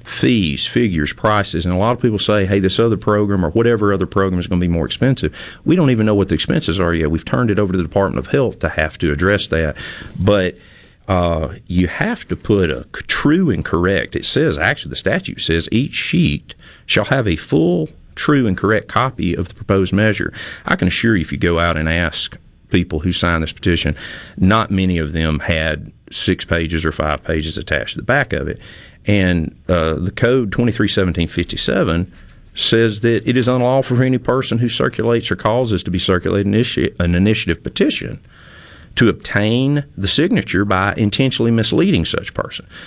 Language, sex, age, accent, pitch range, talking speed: English, male, 40-59, American, 85-110 Hz, 195 wpm